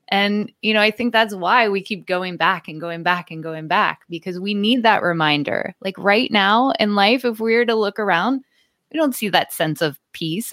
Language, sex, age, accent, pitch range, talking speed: English, female, 20-39, American, 165-215 Hz, 230 wpm